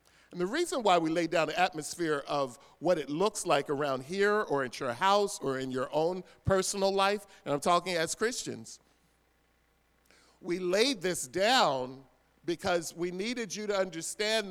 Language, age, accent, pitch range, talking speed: English, 50-69, American, 150-215 Hz, 165 wpm